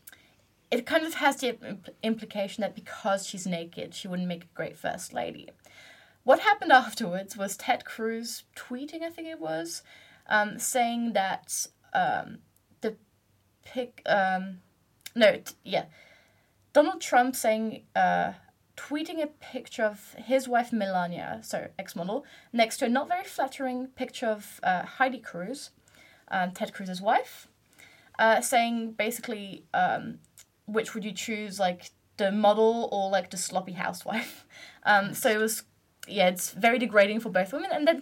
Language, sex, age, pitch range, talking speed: English, female, 20-39, 195-265 Hz, 150 wpm